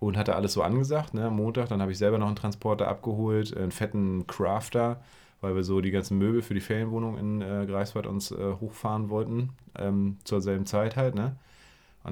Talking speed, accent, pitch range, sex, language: 205 wpm, German, 95-110 Hz, male, German